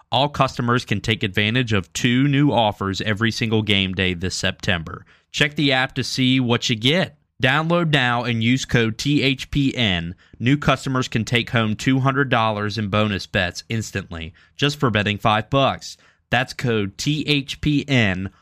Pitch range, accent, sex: 100-130 Hz, American, male